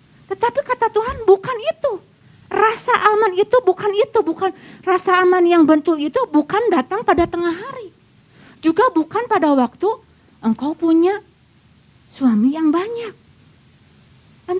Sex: female